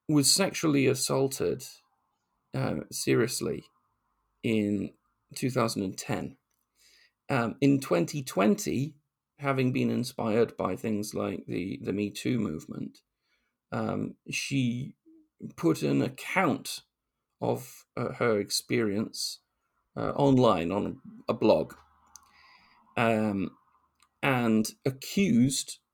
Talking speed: 90 wpm